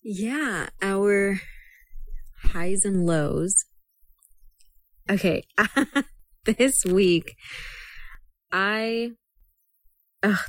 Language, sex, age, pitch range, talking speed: English, female, 20-39, 155-195 Hz, 65 wpm